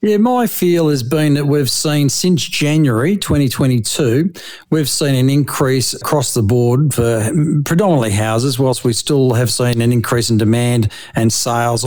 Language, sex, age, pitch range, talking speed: English, male, 40-59, 115-145 Hz, 160 wpm